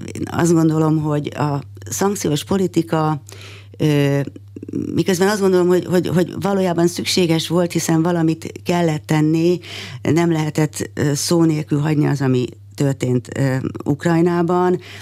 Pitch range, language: 125-155 Hz, Hungarian